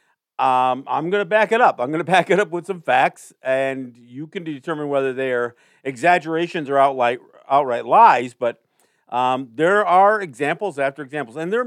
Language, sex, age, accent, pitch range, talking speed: English, male, 50-69, American, 125-175 Hz, 185 wpm